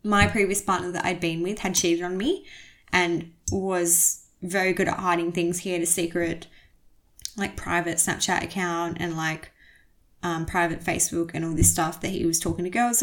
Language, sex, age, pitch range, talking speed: English, female, 10-29, 165-185 Hz, 190 wpm